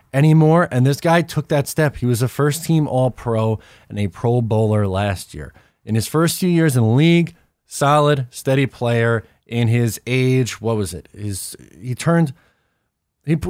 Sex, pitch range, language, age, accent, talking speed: male, 115-155 Hz, English, 20-39, American, 175 wpm